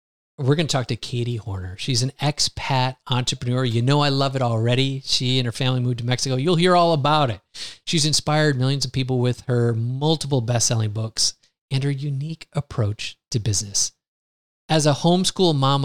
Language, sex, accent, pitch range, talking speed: English, male, American, 115-140 Hz, 185 wpm